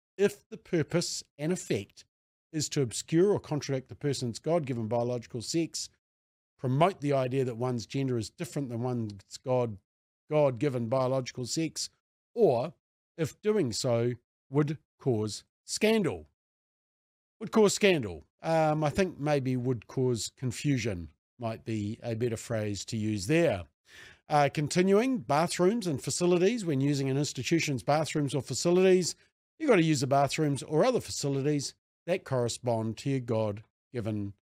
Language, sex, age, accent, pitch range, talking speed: English, male, 50-69, Australian, 115-160 Hz, 145 wpm